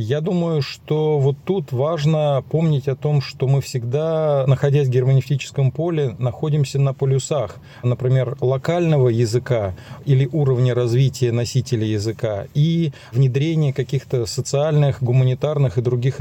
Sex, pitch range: male, 125-145 Hz